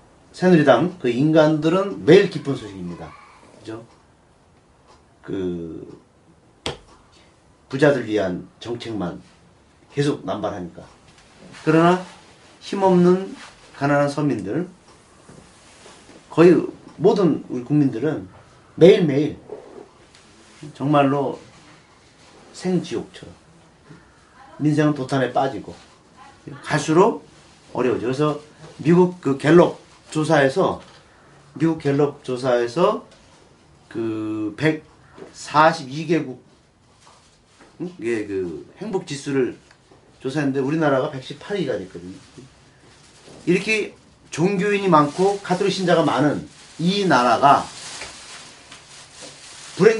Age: 40-59